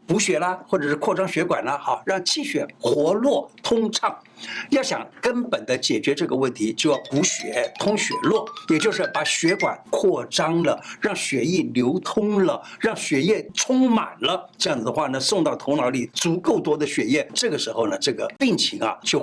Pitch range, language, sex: 165-260 Hz, Chinese, male